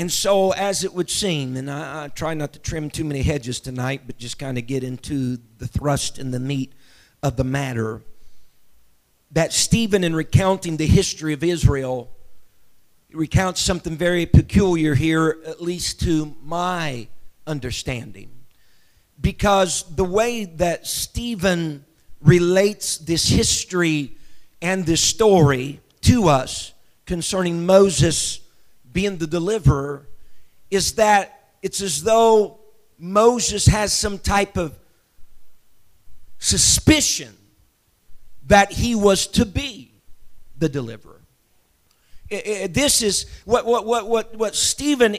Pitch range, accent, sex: 130-195 Hz, American, male